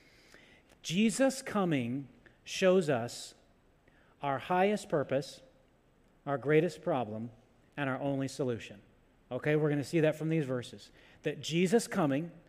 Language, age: English, 40-59